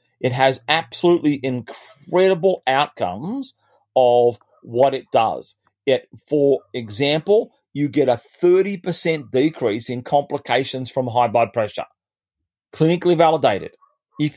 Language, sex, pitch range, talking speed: English, male, 125-175 Hz, 105 wpm